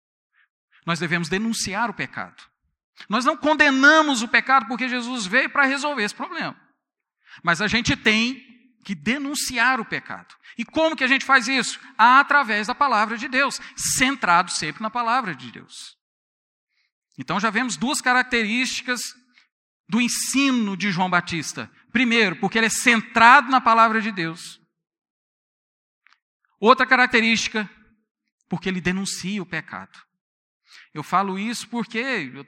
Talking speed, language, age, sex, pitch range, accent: 135 wpm, Portuguese, 50-69, male, 175-255 Hz, Brazilian